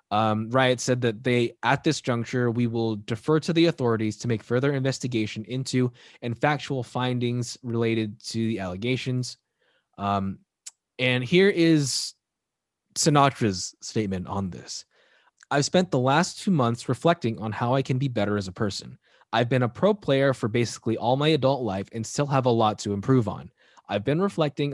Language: English